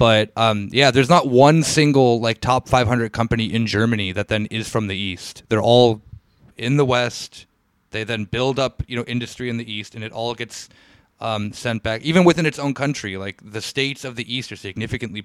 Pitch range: 110-135 Hz